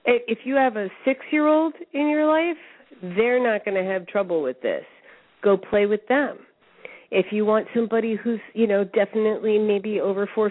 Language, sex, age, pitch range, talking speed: English, female, 40-59, 190-255 Hz, 175 wpm